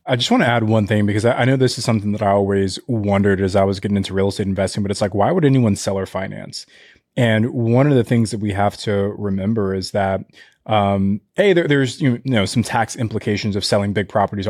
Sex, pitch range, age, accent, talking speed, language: male, 100-125 Hz, 20-39, American, 245 wpm, English